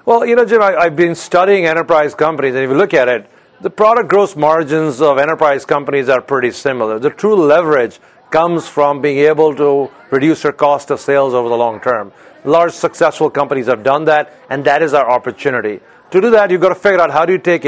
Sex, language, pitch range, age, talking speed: male, English, 140-175 Hz, 40-59, 220 wpm